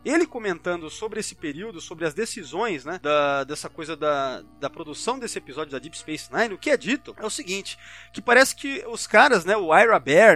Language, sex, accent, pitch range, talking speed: Portuguese, male, Brazilian, 170-275 Hz, 215 wpm